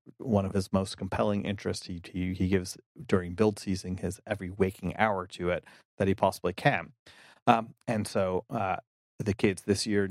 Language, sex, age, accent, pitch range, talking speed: English, male, 30-49, American, 95-105 Hz, 180 wpm